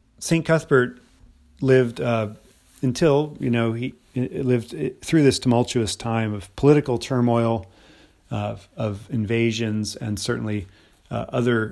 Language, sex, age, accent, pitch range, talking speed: English, male, 40-59, American, 105-125 Hz, 130 wpm